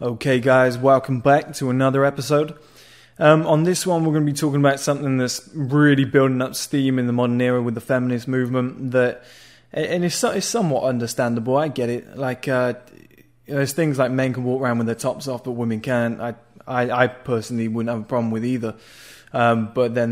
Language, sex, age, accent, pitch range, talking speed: English, male, 20-39, British, 120-140 Hz, 210 wpm